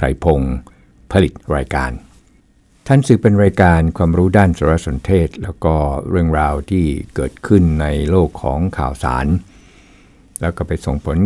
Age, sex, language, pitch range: 60-79, male, Thai, 75-95 Hz